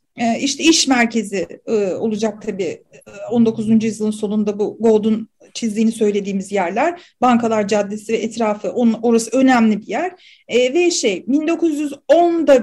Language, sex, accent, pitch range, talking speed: Turkish, female, native, 225-310 Hz, 115 wpm